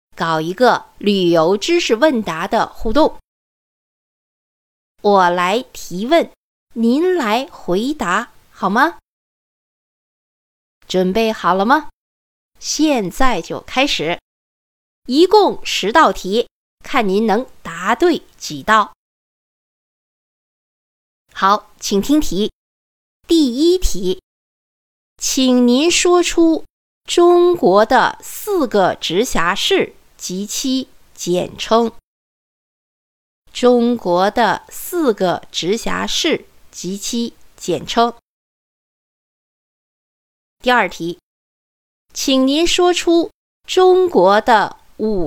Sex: female